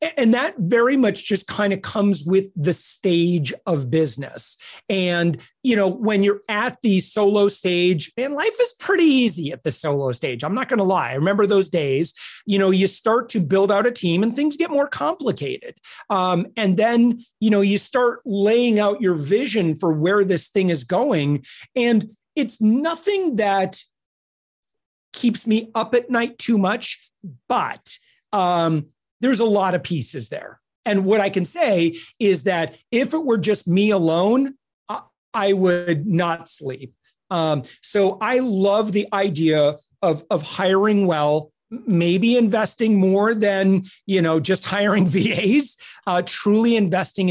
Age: 30-49